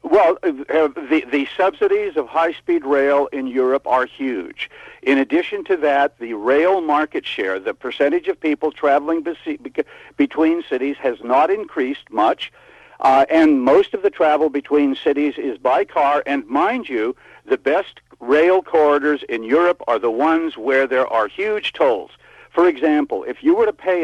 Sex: male